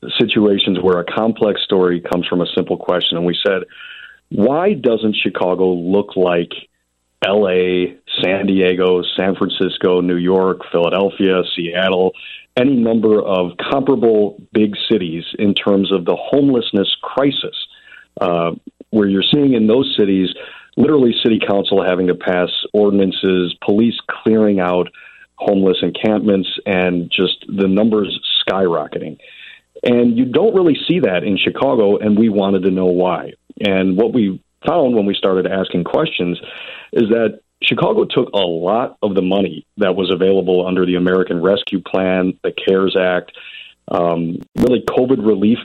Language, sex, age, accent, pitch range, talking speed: English, male, 40-59, American, 90-105 Hz, 145 wpm